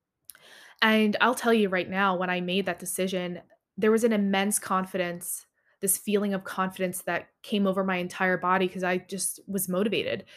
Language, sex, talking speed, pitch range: English, female, 180 wpm, 185-215 Hz